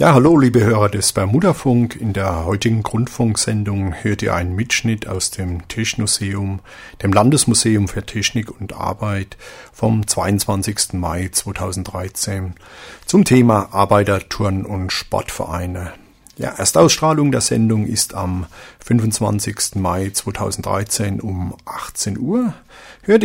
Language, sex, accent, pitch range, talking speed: German, male, German, 95-120 Hz, 120 wpm